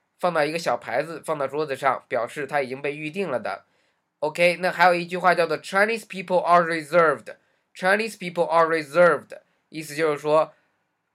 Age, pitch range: 20-39, 150-185 Hz